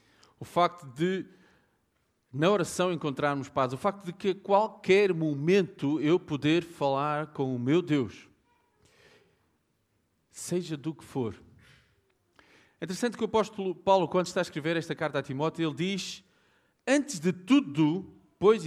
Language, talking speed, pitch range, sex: Portuguese, 145 wpm, 135-185 Hz, male